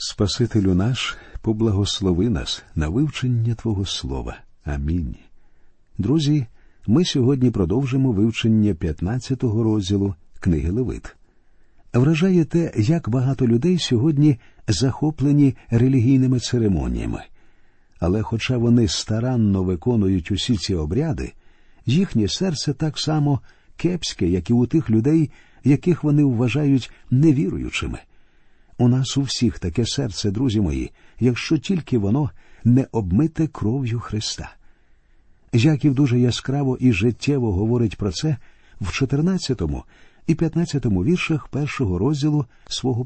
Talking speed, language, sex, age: 110 wpm, Ukrainian, male, 50-69